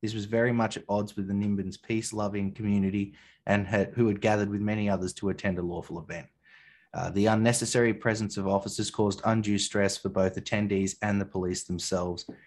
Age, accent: 20-39, Australian